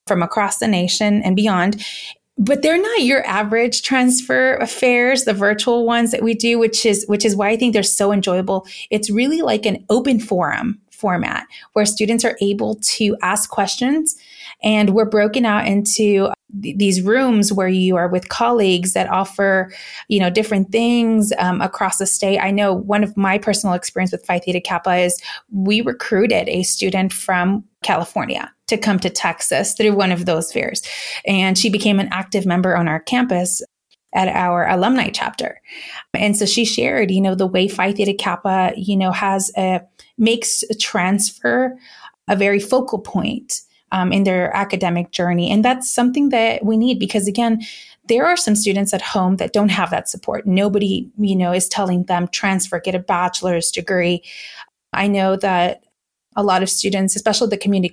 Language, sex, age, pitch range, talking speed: English, female, 30-49, 185-220 Hz, 180 wpm